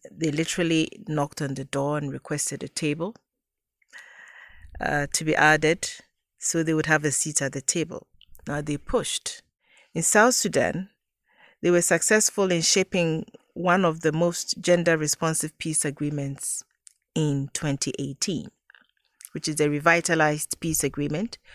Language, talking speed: English, 140 wpm